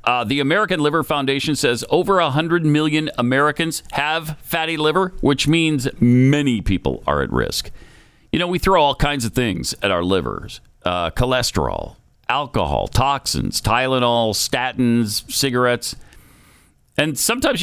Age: 50-69